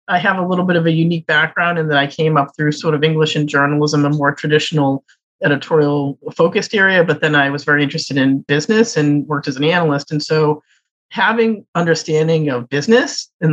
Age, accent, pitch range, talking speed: 40-59, American, 140-170 Hz, 205 wpm